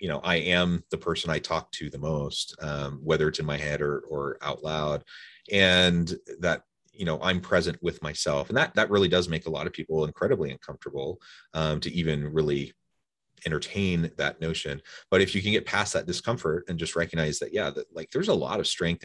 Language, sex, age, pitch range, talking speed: English, male, 30-49, 75-90 Hz, 210 wpm